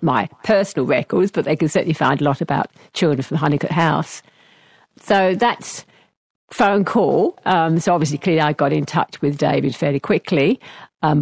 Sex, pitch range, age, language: female, 145-180 Hz, 50-69, English